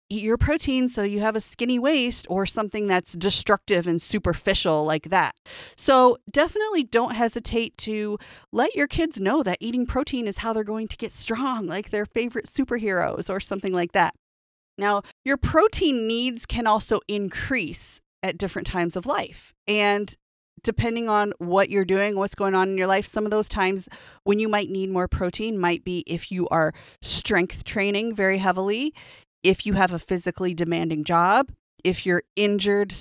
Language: English